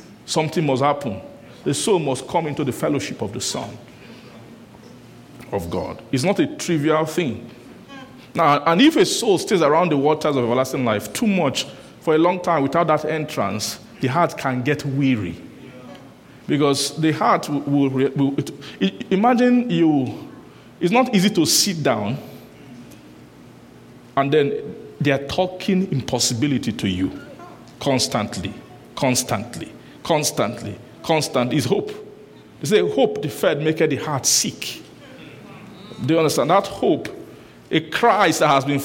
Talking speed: 145 wpm